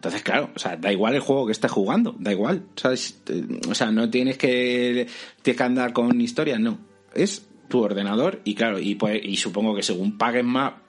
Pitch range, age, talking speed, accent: 110-150 Hz, 30-49, 210 wpm, Spanish